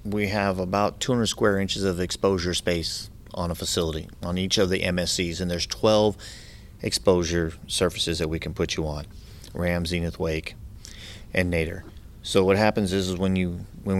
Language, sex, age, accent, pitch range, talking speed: English, male, 30-49, American, 90-100 Hz, 180 wpm